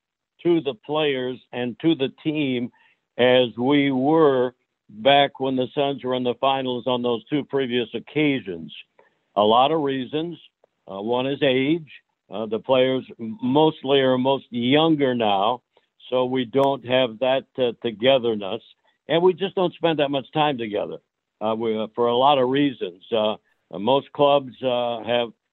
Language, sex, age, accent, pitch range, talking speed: English, male, 60-79, American, 120-140 Hz, 155 wpm